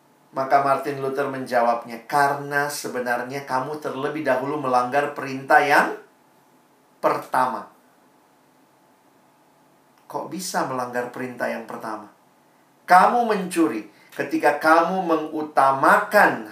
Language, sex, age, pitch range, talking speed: Indonesian, male, 40-59, 140-185 Hz, 85 wpm